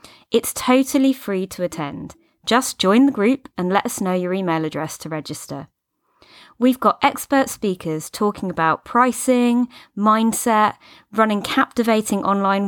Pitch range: 175-245 Hz